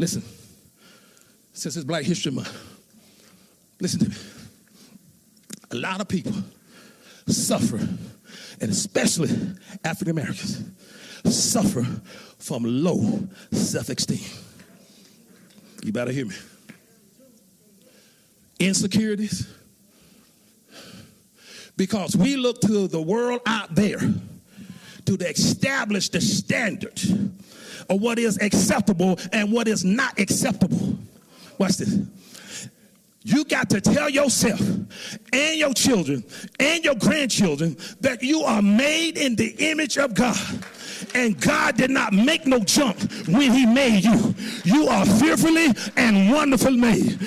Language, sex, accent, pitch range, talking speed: English, male, American, 200-270 Hz, 110 wpm